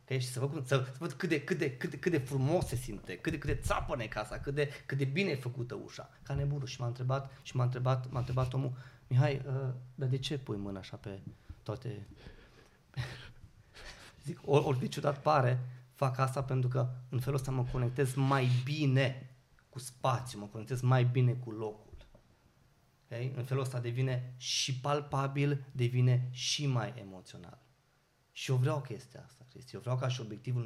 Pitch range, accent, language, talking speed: 120-135 Hz, native, Romanian, 185 wpm